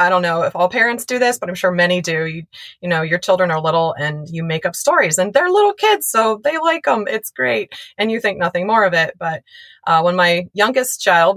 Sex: female